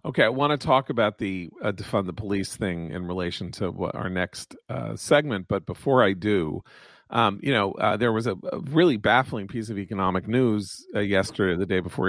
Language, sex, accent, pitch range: English, male, American, 100-125 Hz